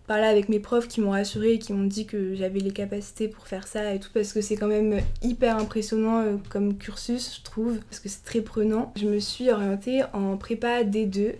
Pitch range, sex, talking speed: 205-235 Hz, female, 225 wpm